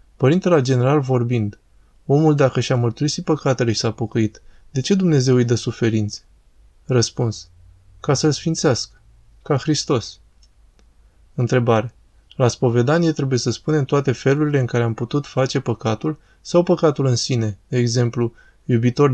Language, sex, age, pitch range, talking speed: Romanian, male, 20-39, 115-140 Hz, 140 wpm